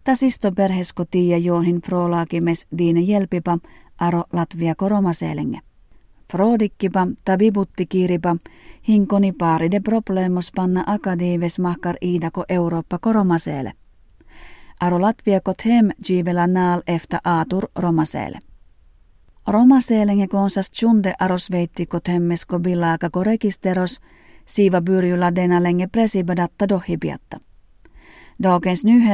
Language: Finnish